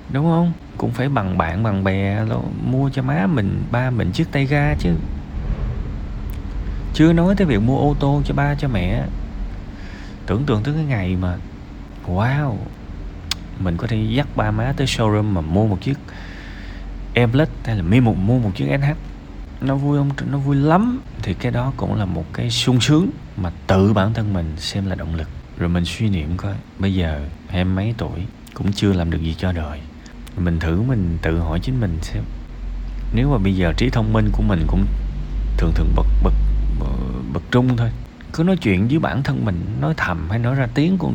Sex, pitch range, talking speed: male, 90-125 Hz, 205 wpm